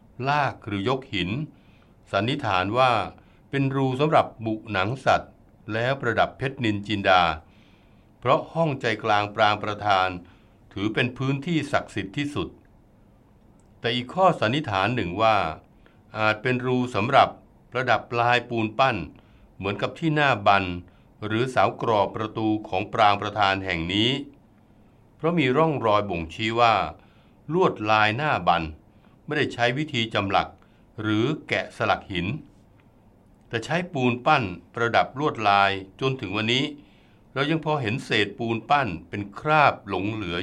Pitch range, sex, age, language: 100-130 Hz, male, 60-79, Thai